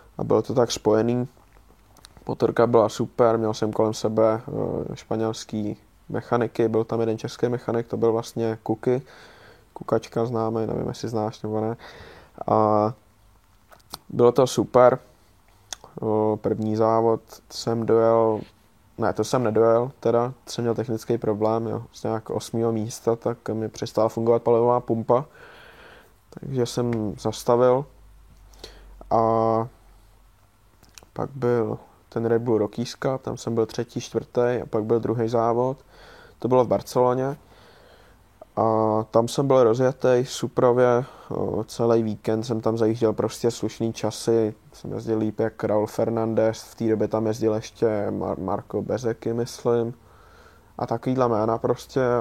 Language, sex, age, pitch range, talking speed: Czech, male, 20-39, 110-120 Hz, 130 wpm